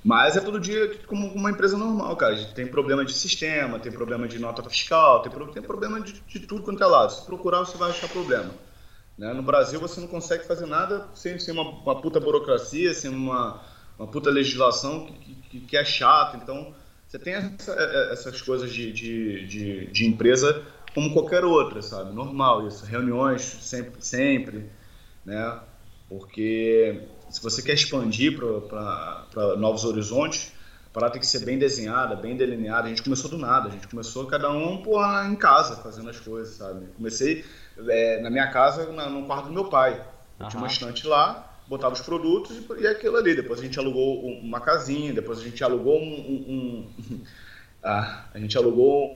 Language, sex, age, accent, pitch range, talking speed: Portuguese, male, 20-39, Brazilian, 115-165 Hz, 175 wpm